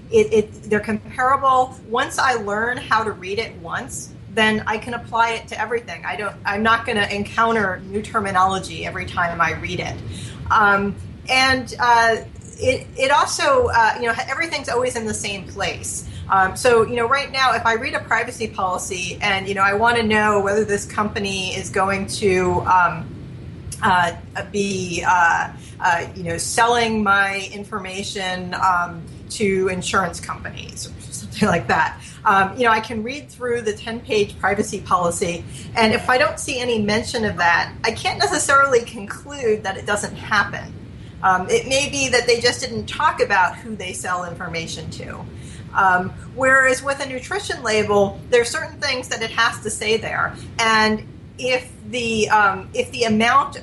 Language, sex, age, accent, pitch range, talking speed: English, female, 30-49, American, 200-255 Hz, 175 wpm